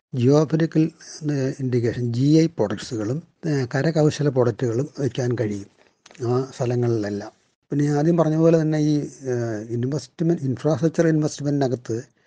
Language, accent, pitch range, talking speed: Malayalam, native, 115-150 Hz, 100 wpm